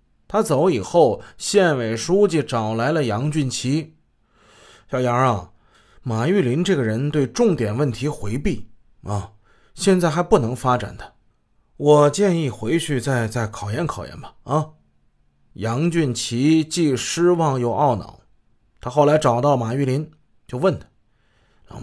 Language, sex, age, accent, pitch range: Chinese, male, 30-49, native, 115-160 Hz